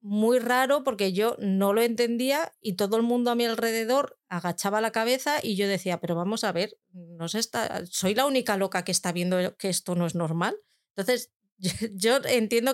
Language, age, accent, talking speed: Spanish, 30-49, Spanish, 185 wpm